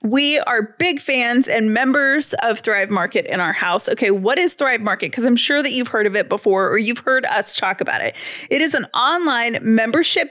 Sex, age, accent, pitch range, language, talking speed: female, 20-39, American, 220-290 Hz, English, 220 wpm